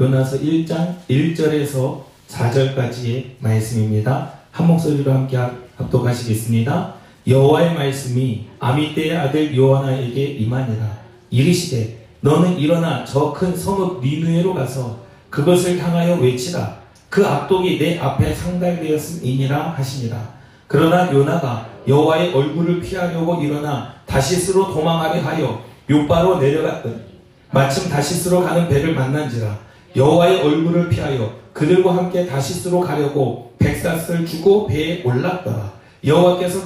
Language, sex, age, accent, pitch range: Korean, male, 40-59, native, 125-170 Hz